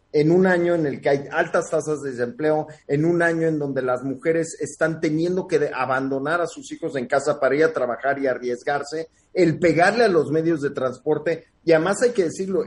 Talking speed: 215 wpm